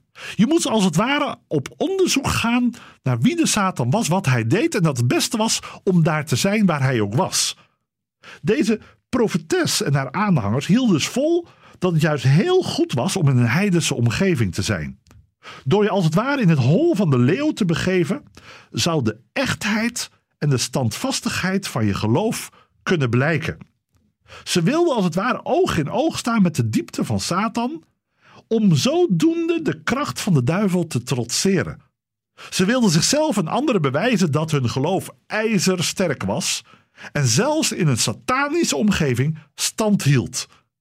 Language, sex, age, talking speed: Dutch, male, 50-69, 170 wpm